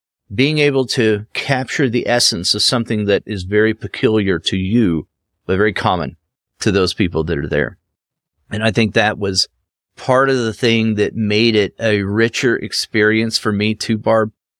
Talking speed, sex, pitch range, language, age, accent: 175 wpm, male, 105-130 Hz, English, 40-59, American